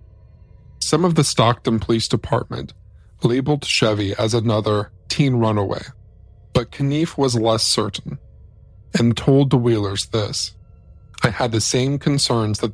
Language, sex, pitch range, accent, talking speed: English, male, 105-125 Hz, American, 130 wpm